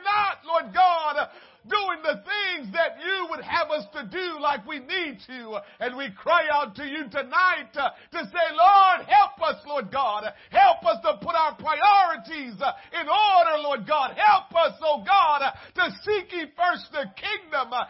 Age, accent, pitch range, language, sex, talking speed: 50-69, American, 295-365 Hz, English, male, 170 wpm